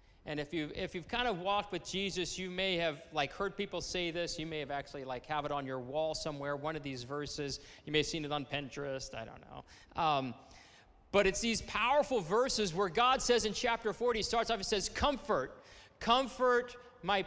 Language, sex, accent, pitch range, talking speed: English, male, American, 140-190 Hz, 215 wpm